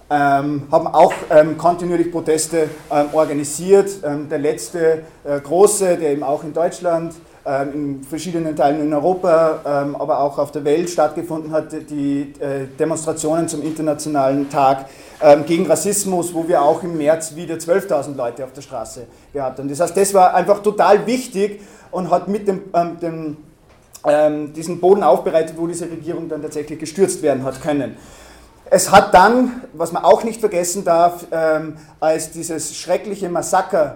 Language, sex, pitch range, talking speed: German, male, 150-180 Hz, 165 wpm